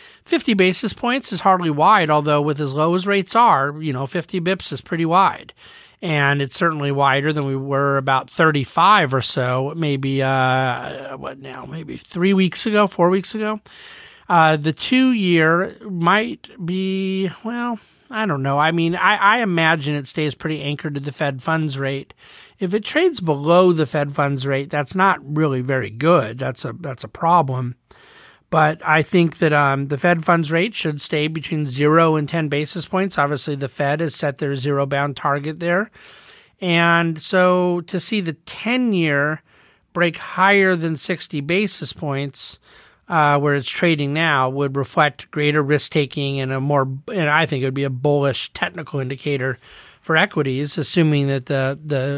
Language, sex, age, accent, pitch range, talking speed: English, male, 40-59, American, 140-180 Hz, 170 wpm